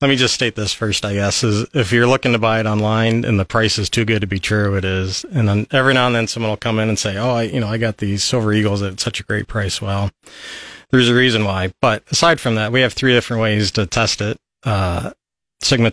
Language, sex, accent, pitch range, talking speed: English, male, American, 100-115 Hz, 270 wpm